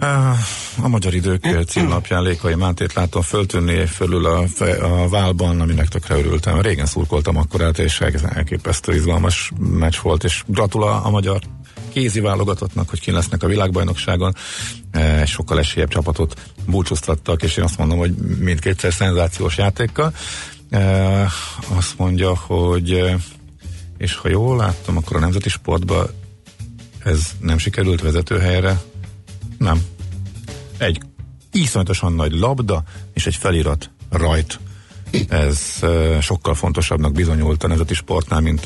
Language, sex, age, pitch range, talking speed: Hungarian, male, 50-69, 85-100 Hz, 120 wpm